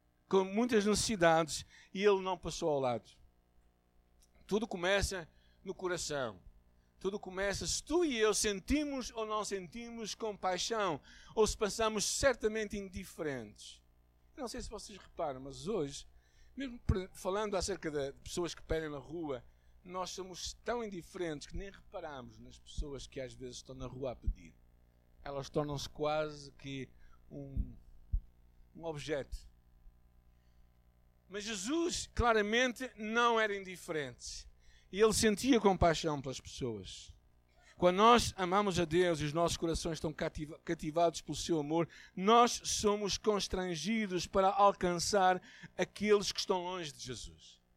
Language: Portuguese